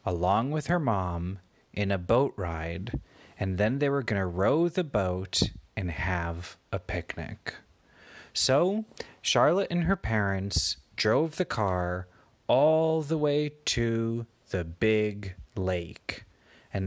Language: English